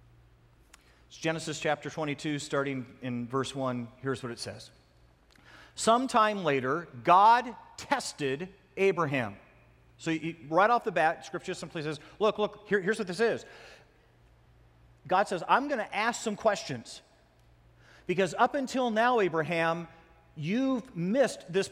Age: 40-59